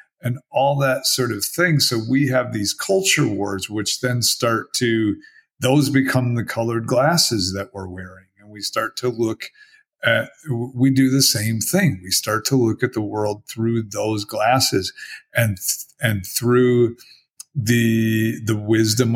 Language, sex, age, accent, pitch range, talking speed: English, male, 40-59, American, 105-130 Hz, 160 wpm